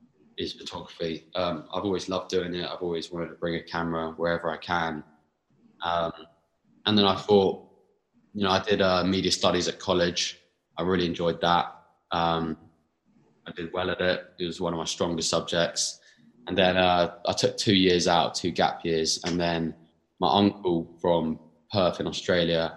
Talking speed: 180 wpm